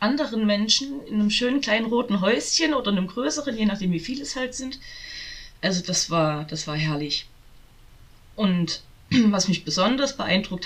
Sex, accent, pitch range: female, German, 165-225 Hz